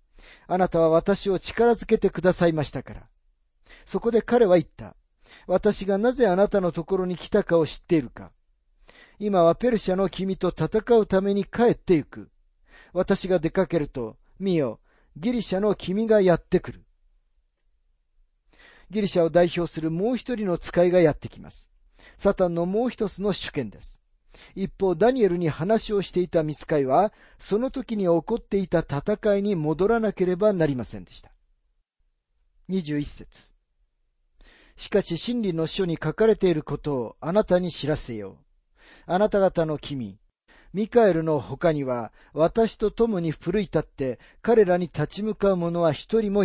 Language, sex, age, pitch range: Japanese, male, 40-59, 140-200 Hz